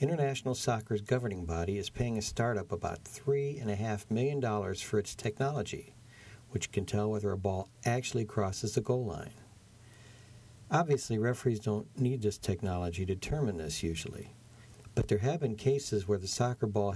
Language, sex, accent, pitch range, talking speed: English, male, American, 105-125 Hz, 155 wpm